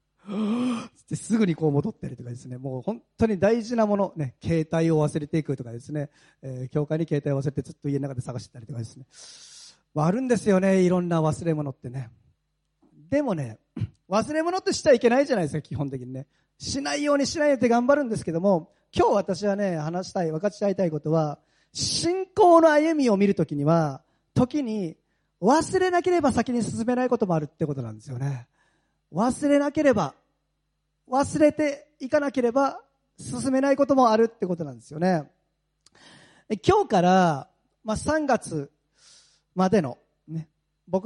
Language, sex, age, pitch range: Japanese, male, 40-59, 150-245 Hz